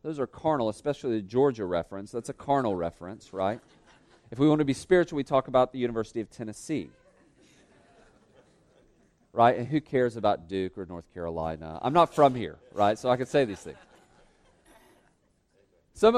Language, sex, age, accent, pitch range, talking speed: English, male, 40-59, American, 120-185 Hz, 170 wpm